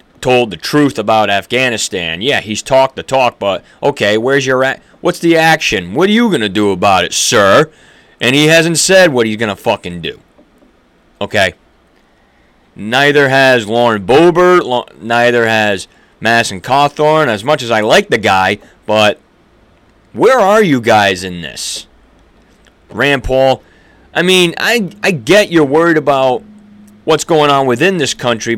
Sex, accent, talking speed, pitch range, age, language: male, American, 160 wpm, 110-150 Hz, 30-49, English